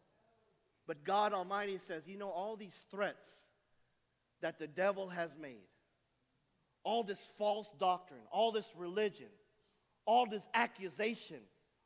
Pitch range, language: 180-250 Hz, English